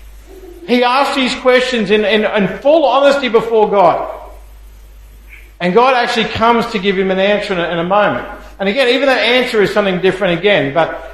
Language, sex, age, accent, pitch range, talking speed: English, male, 50-69, Australian, 190-240 Hz, 185 wpm